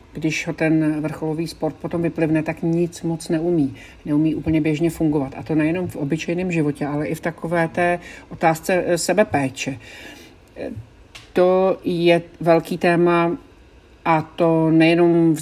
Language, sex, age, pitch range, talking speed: Czech, male, 50-69, 150-165 Hz, 145 wpm